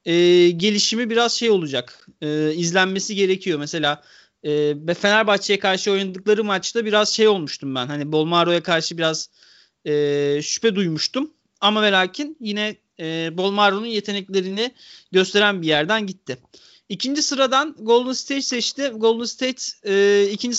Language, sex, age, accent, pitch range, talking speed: Turkish, male, 30-49, native, 155-220 Hz, 130 wpm